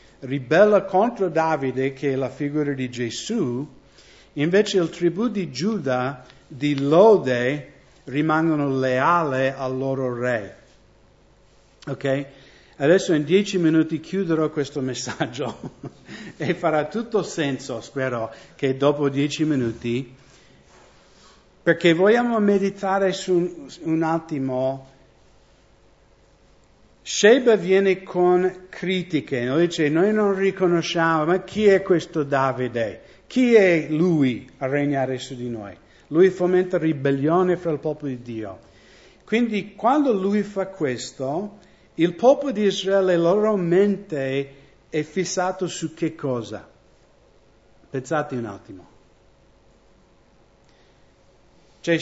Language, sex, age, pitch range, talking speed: English, male, 60-79, 135-185 Hz, 110 wpm